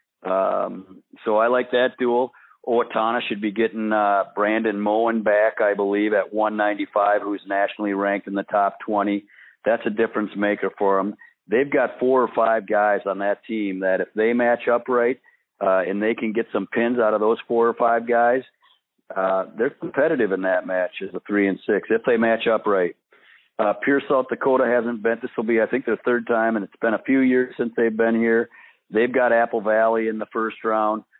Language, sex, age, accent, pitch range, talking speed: English, male, 50-69, American, 100-115 Hz, 210 wpm